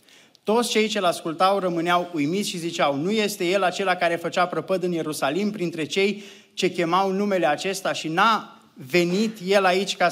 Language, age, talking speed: Romanian, 20-39, 170 wpm